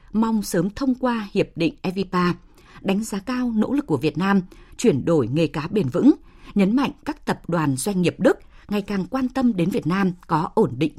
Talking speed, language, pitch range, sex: 215 wpm, Vietnamese, 165-230 Hz, female